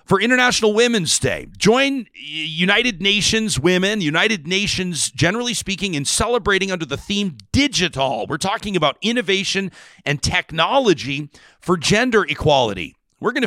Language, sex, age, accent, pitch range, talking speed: English, male, 40-59, American, 145-200 Hz, 130 wpm